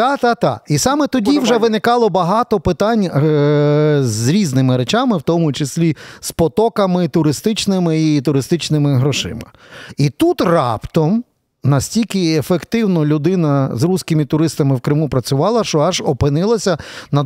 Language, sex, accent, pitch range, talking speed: Ukrainian, male, native, 140-185 Hz, 130 wpm